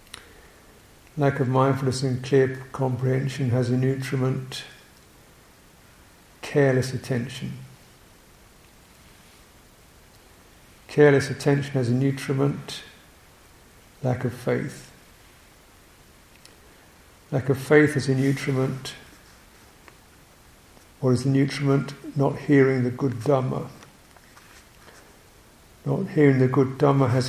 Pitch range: 125-135 Hz